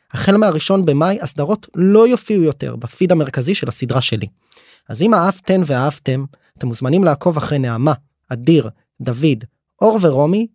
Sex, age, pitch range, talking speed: male, 20-39, 125-170 Hz, 140 wpm